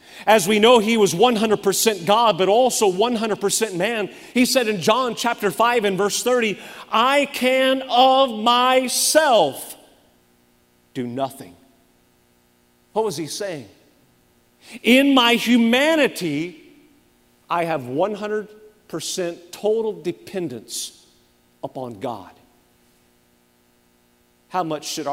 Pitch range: 155-235 Hz